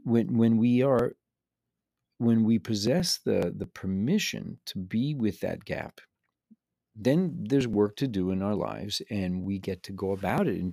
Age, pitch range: 50-69, 95-125 Hz